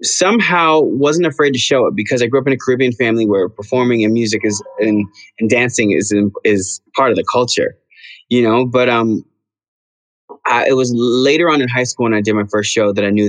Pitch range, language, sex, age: 105-130 Hz, English, male, 20-39